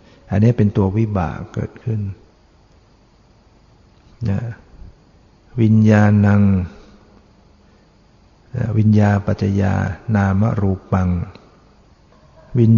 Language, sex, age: Thai, male, 60-79